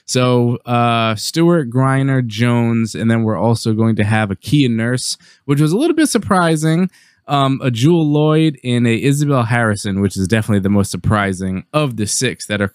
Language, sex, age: English, male, 20-39